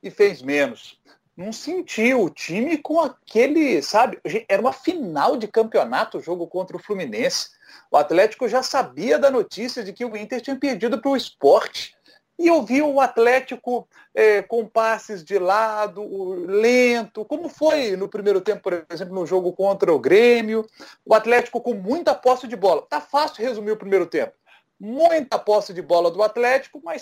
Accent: Brazilian